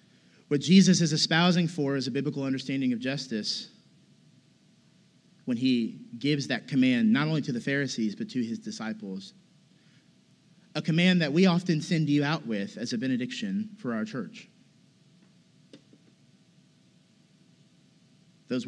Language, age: English, 30-49